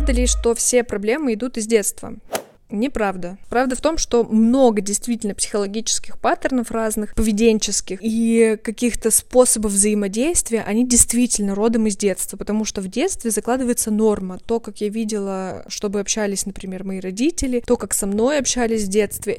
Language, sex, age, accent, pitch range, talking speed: Russian, female, 20-39, native, 205-235 Hz, 150 wpm